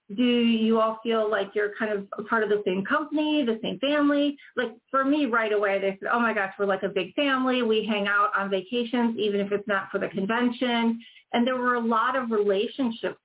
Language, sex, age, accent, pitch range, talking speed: English, female, 40-59, American, 200-265 Hz, 225 wpm